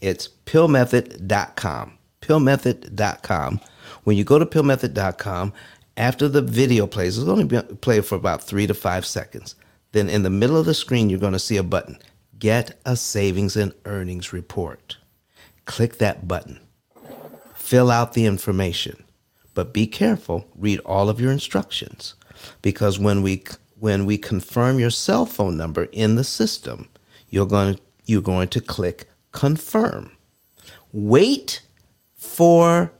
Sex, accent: male, American